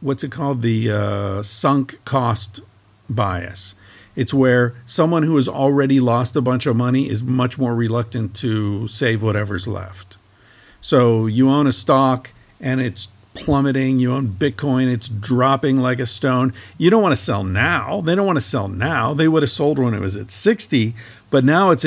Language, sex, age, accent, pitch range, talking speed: English, male, 50-69, American, 105-130 Hz, 185 wpm